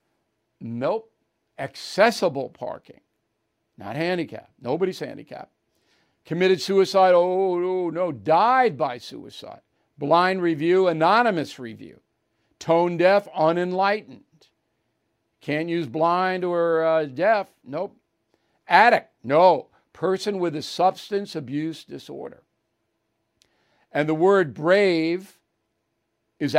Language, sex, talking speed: English, male, 95 wpm